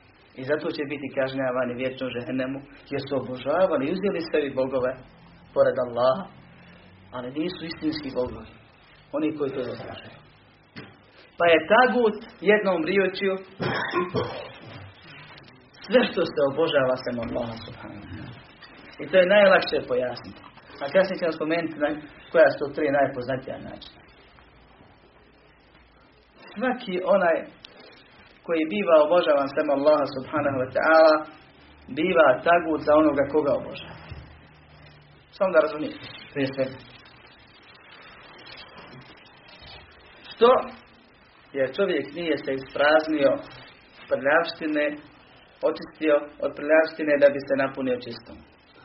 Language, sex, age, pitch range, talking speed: Croatian, male, 40-59, 130-170 Hz, 105 wpm